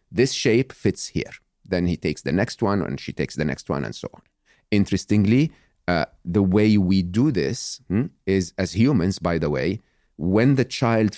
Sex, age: male, 40-59